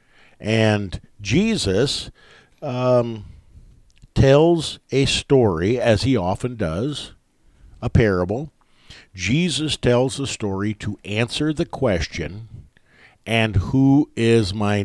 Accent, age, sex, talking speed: American, 50-69, male, 95 wpm